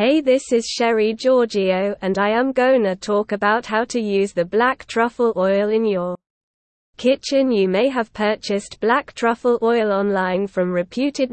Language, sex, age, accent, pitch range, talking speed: English, female, 20-39, British, 195-250 Hz, 165 wpm